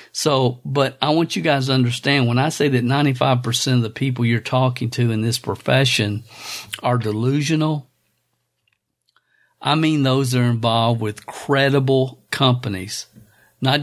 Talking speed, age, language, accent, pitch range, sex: 150 wpm, 50-69, English, American, 110-130 Hz, male